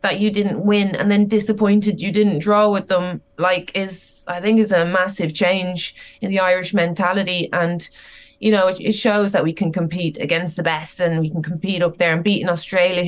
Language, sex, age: English, female, 20-39